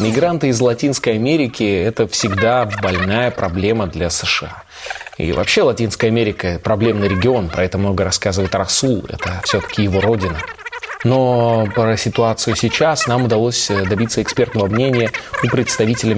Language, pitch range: Russian, 100-125 Hz